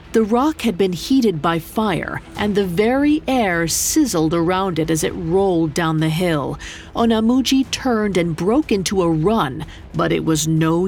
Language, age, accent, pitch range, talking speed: English, 40-59, American, 160-225 Hz, 170 wpm